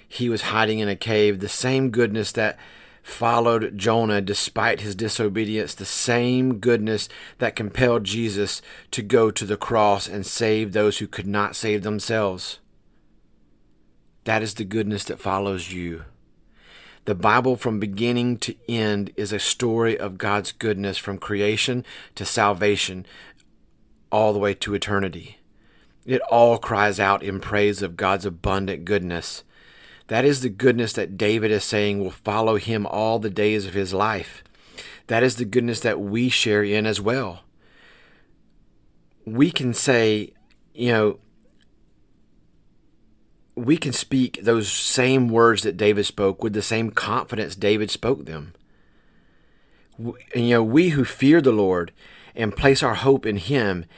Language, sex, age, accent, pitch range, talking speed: English, male, 40-59, American, 100-115 Hz, 150 wpm